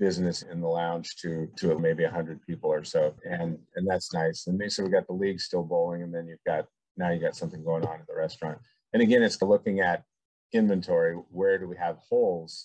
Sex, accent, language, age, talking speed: male, American, English, 40-59, 225 wpm